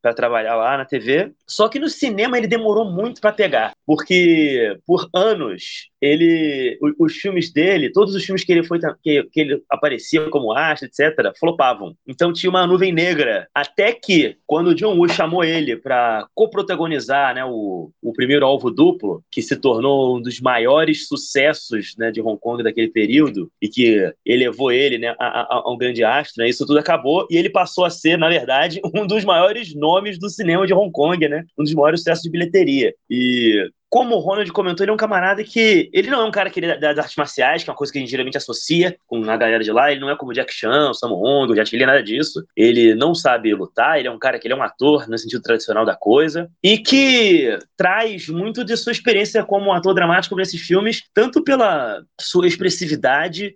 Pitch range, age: 145-210 Hz, 30-49